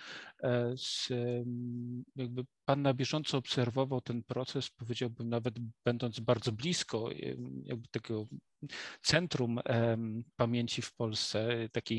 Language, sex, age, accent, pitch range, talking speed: Polish, male, 40-59, native, 120-145 Hz, 105 wpm